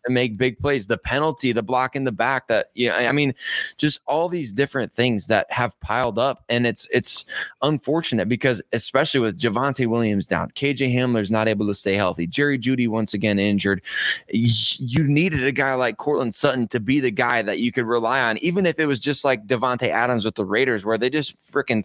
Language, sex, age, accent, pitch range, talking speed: English, male, 20-39, American, 115-140 Hz, 215 wpm